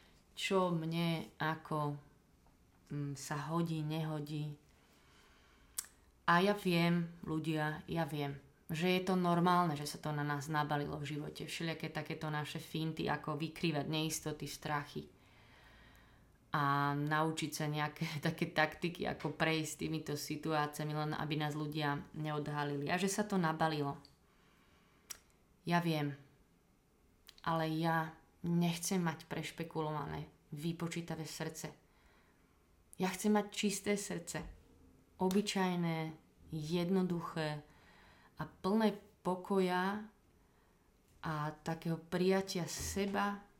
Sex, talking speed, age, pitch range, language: female, 105 wpm, 20-39, 150-180 Hz, Slovak